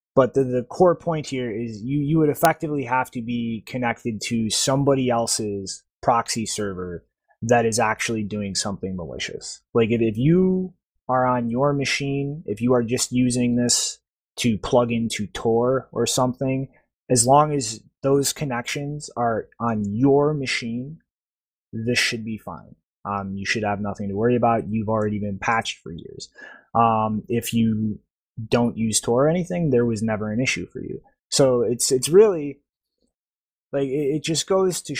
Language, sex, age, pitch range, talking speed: English, male, 20-39, 110-140 Hz, 170 wpm